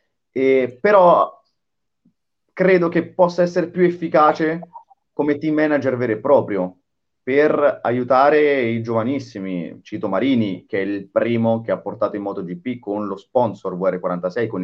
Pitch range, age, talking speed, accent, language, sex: 110-145 Hz, 30-49, 145 wpm, native, Italian, male